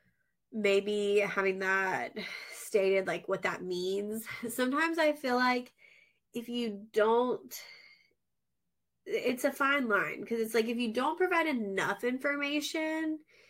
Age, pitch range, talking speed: 20-39, 190-245 Hz, 125 wpm